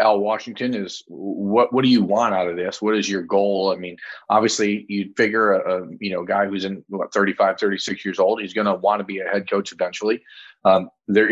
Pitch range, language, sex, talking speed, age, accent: 100-115 Hz, English, male, 235 wpm, 30-49, American